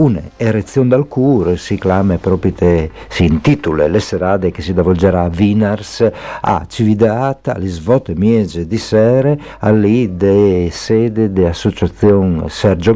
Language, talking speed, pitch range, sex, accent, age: Italian, 110 wpm, 85-105 Hz, male, native, 50-69